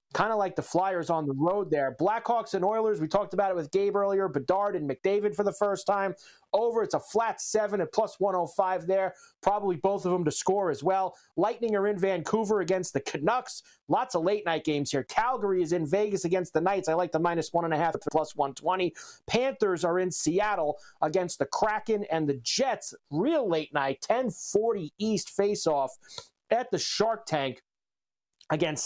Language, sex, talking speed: English, male, 185 wpm